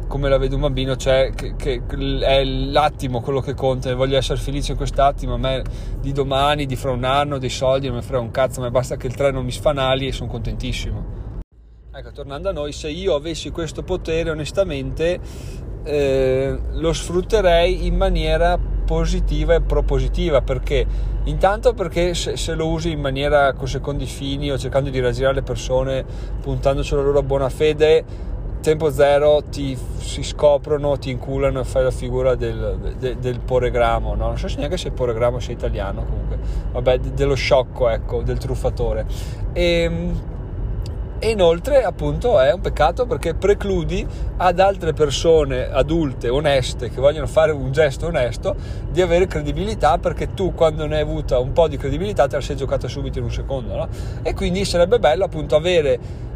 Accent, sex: native, male